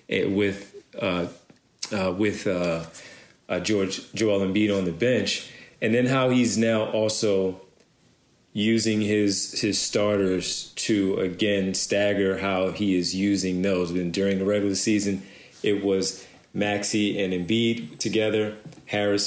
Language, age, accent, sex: English, 40-59, American, male